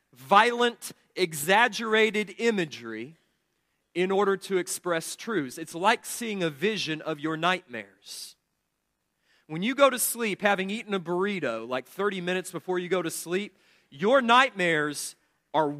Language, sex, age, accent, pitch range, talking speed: English, male, 40-59, American, 165-230 Hz, 135 wpm